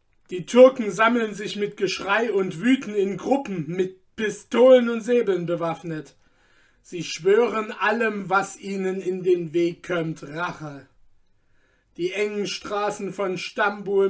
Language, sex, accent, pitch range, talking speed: German, male, German, 170-200 Hz, 130 wpm